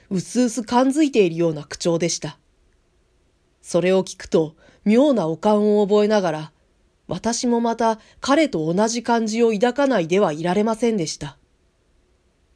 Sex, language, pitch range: female, Japanese, 160-240 Hz